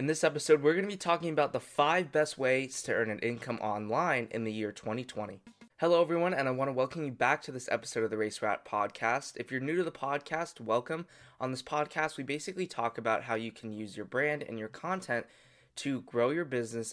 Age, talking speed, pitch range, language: 20-39, 235 wpm, 110-150 Hz, English